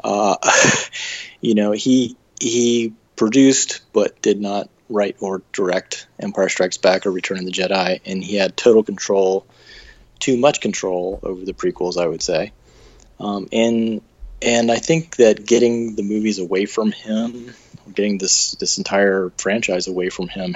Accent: American